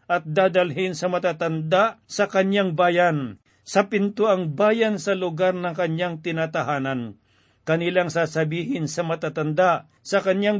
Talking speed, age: 120 wpm, 50-69